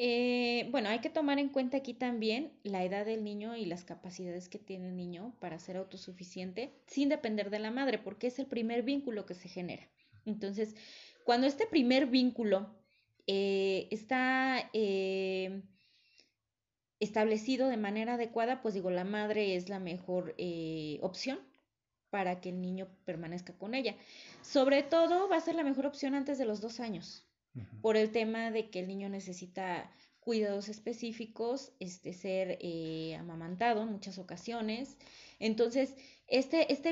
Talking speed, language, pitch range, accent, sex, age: 160 wpm, Spanish, 190-255 Hz, Mexican, female, 20-39